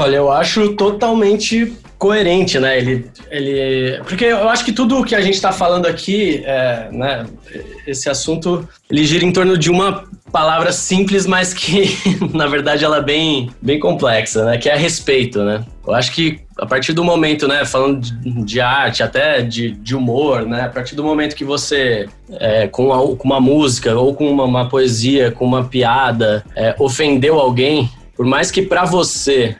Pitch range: 120-150 Hz